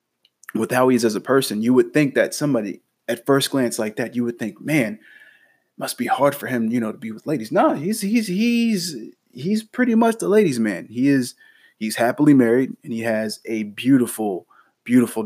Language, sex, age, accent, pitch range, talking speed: English, male, 20-39, American, 110-130 Hz, 215 wpm